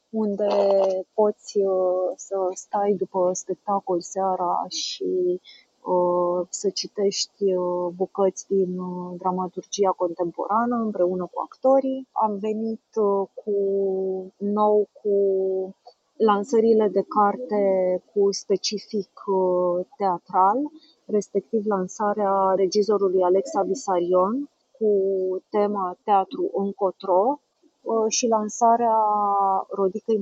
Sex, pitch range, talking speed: female, 190-220 Hz, 75 wpm